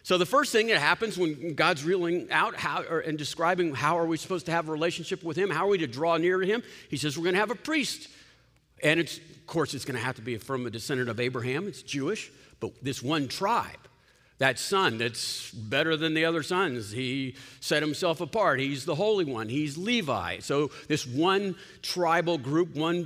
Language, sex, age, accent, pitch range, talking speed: English, male, 50-69, American, 130-175 Hz, 215 wpm